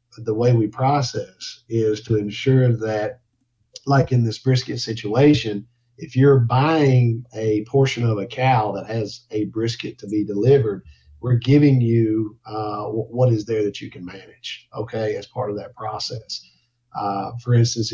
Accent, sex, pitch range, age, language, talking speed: American, male, 105-125 Hz, 50-69, English, 165 wpm